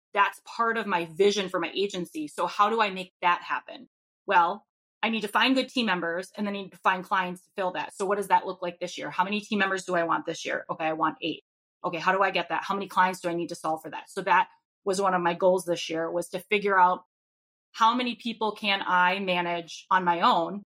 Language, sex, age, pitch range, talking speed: English, female, 20-39, 175-210 Hz, 265 wpm